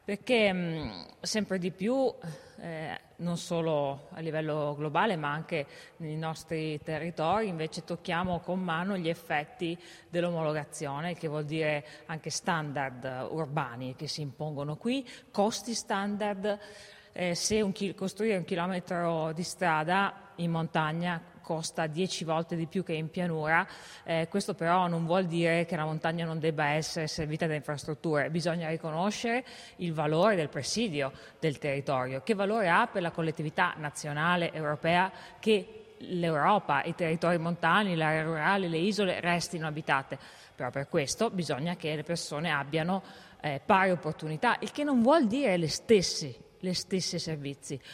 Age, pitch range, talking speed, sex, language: 30-49, 155-190 Hz, 145 wpm, female, Italian